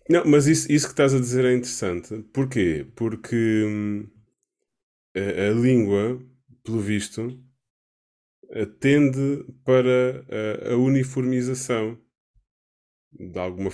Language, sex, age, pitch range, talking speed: Portuguese, male, 20-39, 95-125 Hz, 110 wpm